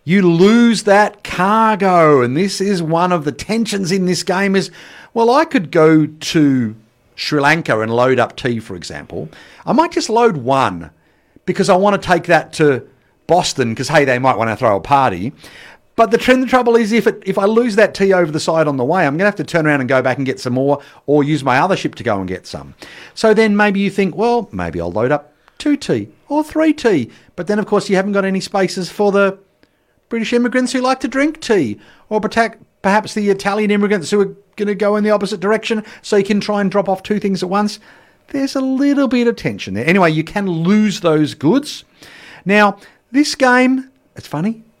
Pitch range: 150-220 Hz